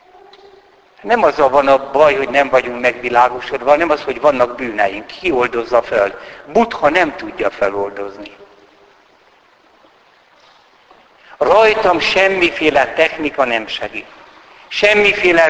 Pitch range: 130-190 Hz